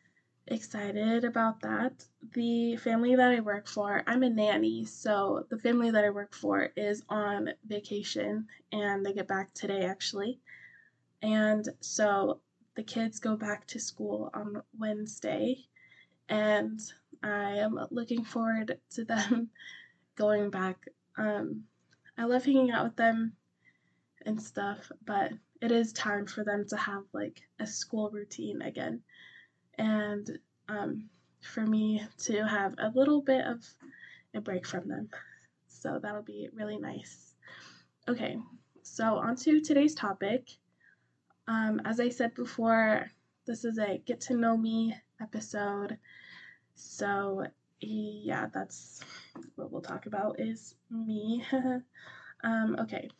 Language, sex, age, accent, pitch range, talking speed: English, female, 10-29, American, 210-240 Hz, 135 wpm